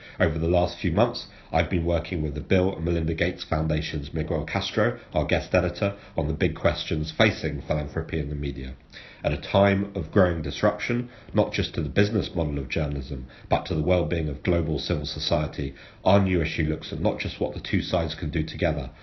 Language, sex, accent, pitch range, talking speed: English, male, British, 75-95 Hz, 205 wpm